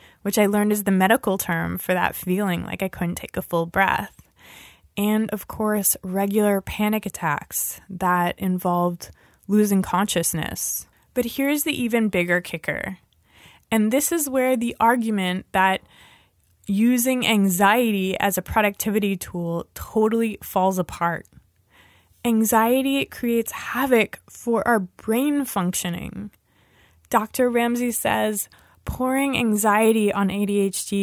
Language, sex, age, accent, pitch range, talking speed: English, female, 20-39, American, 180-225 Hz, 120 wpm